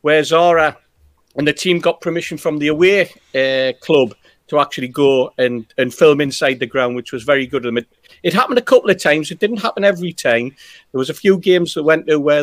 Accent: British